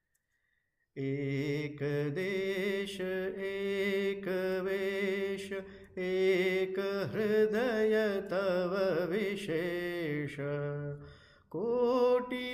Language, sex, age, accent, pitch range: Hindi, male, 30-49, native, 145-195 Hz